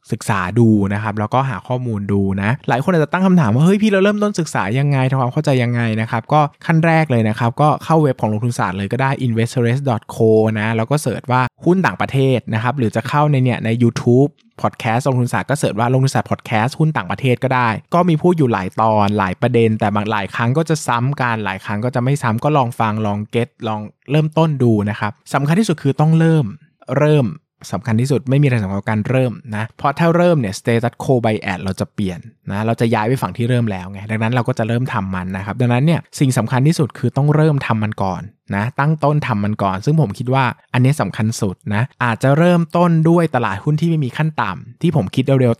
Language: Thai